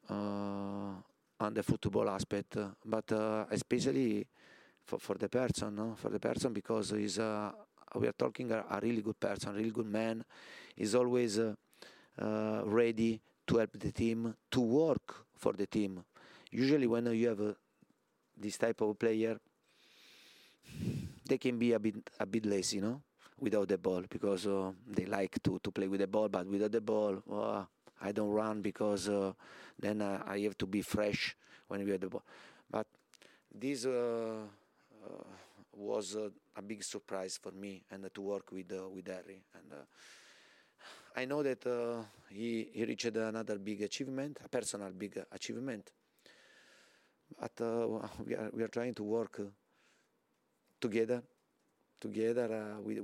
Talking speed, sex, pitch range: 175 wpm, male, 100-115 Hz